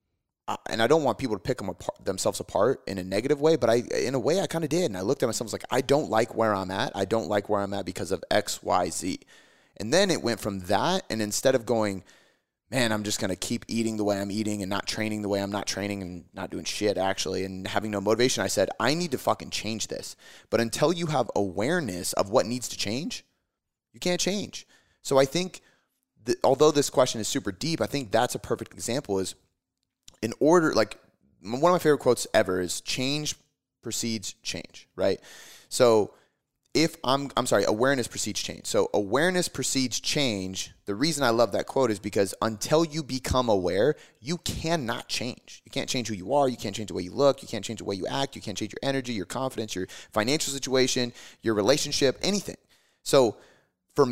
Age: 30-49